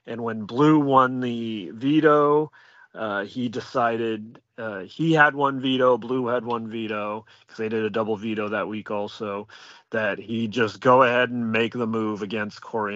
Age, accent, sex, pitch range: 30-49, American, male, 105-130 Hz